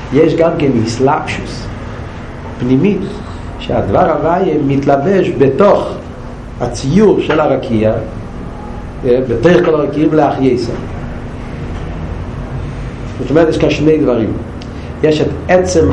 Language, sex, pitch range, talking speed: Hebrew, male, 120-165 Hz, 95 wpm